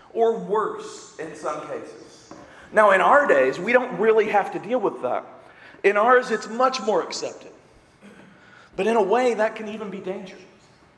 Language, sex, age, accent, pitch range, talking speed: English, male, 40-59, American, 200-255 Hz, 175 wpm